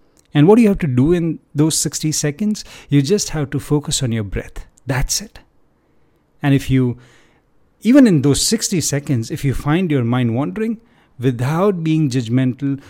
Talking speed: 175 wpm